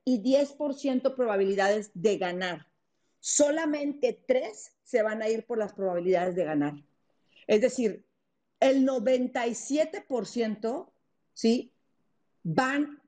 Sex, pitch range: female, 205-270 Hz